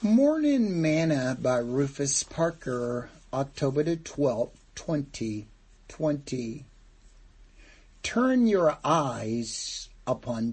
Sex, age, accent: male, 60-79, American